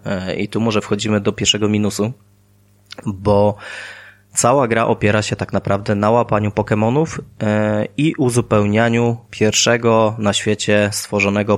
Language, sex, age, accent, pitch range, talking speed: Polish, male, 20-39, native, 100-115 Hz, 120 wpm